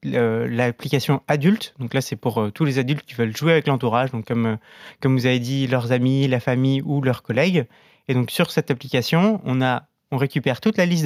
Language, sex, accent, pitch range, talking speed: French, male, French, 125-155 Hz, 210 wpm